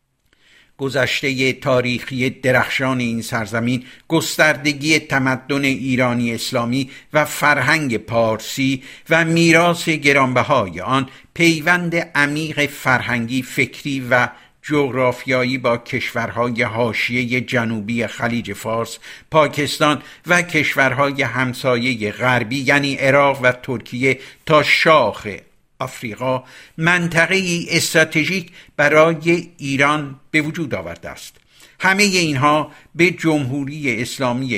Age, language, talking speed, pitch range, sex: 60-79, Persian, 90 wpm, 125-155 Hz, male